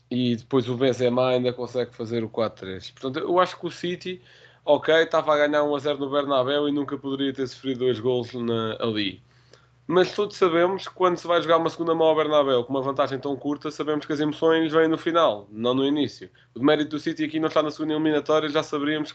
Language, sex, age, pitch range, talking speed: Portuguese, male, 20-39, 120-155 Hz, 230 wpm